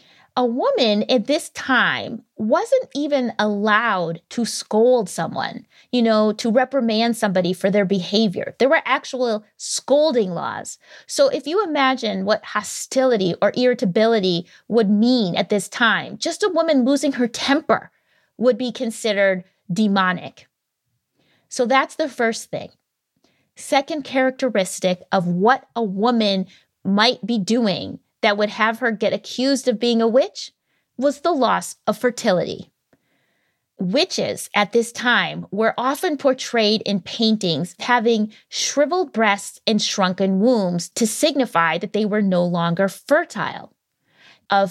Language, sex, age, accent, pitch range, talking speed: English, female, 20-39, American, 195-255 Hz, 135 wpm